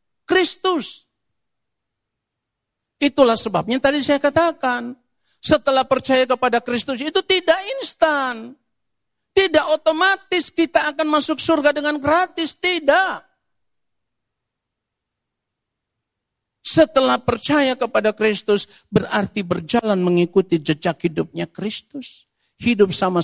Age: 50-69